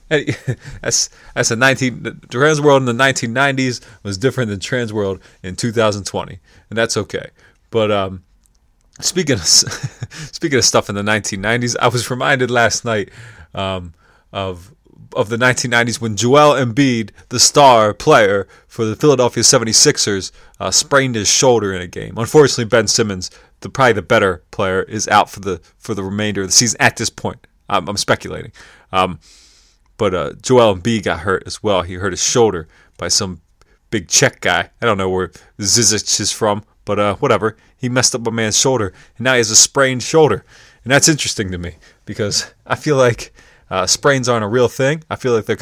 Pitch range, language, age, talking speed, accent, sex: 100-125 Hz, English, 30-49, 185 wpm, American, male